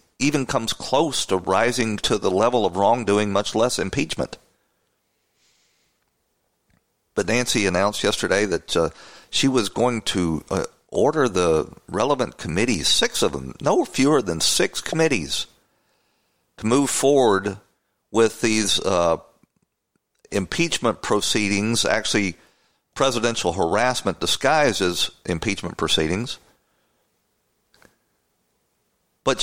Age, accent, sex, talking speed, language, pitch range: 50-69, American, male, 105 wpm, English, 100-125 Hz